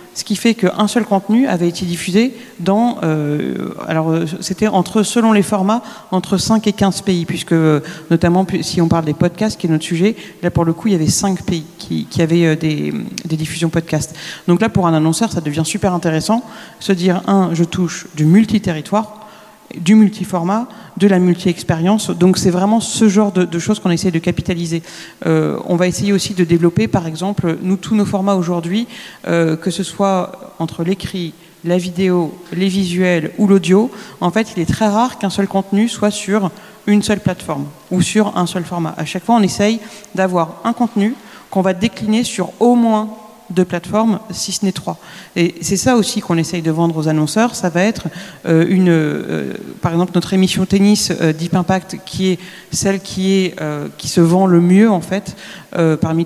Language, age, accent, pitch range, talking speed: French, 40-59, French, 170-205 Hz, 200 wpm